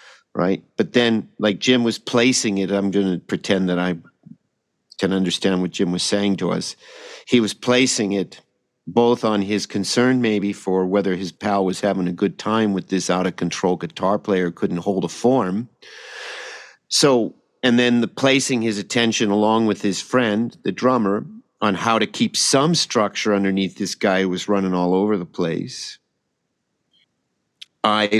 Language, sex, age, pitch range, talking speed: English, male, 50-69, 100-155 Hz, 170 wpm